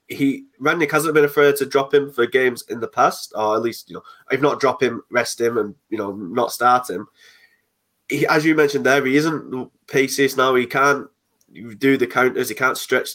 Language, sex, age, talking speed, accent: English, male, 20-39, 215 wpm, British